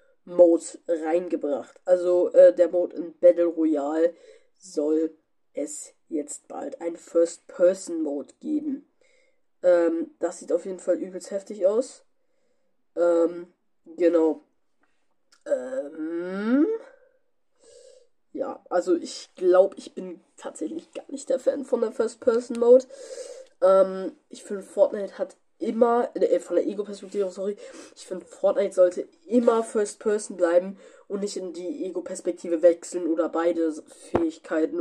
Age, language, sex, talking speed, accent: 20-39, German, female, 130 wpm, German